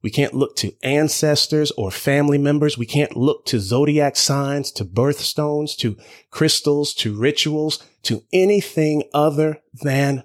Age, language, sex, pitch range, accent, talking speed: 30-49, English, male, 110-140 Hz, American, 140 wpm